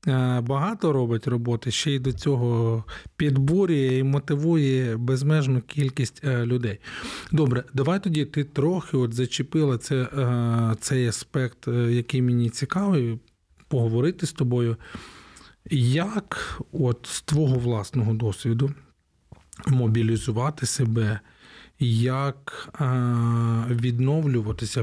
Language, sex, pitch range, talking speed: Ukrainian, male, 115-140 Hz, 90 wpm